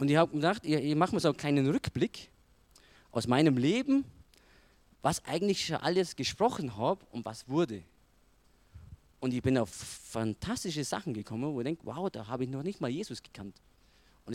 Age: 30-49